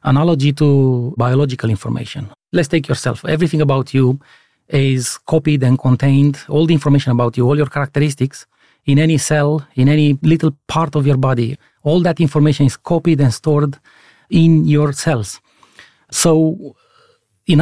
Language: English